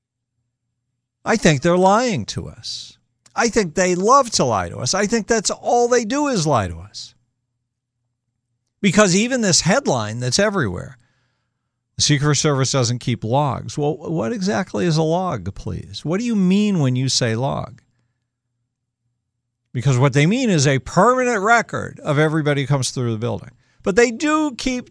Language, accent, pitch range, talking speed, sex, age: English, American, 120-180 Hz, 170 wpm, male, 50-69